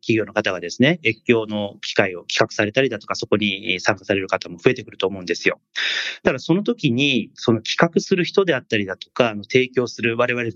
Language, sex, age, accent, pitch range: Japanese, male, 30-49, native, 105-150 Hz